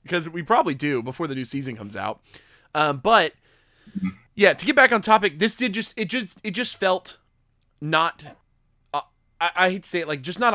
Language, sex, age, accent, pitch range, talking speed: English, male, 20-39, American, 135-205 Hz, 210 wpm